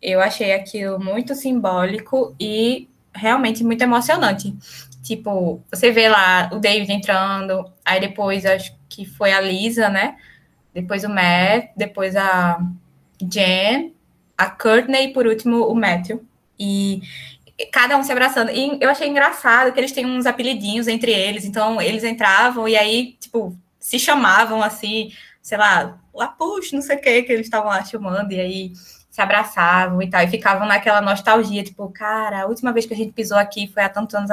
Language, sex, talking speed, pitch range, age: Portuguese, female, 175 wpm, 195-240 Hz, 10-29